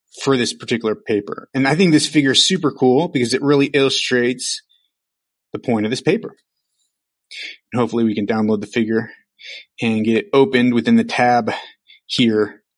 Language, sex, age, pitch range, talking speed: English, male, 30-49, 120-165 Hz, 170 wpm